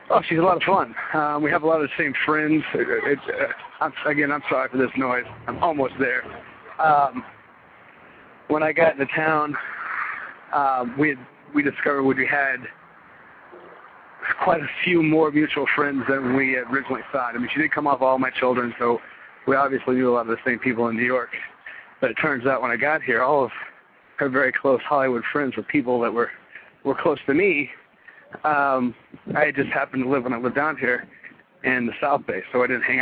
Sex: male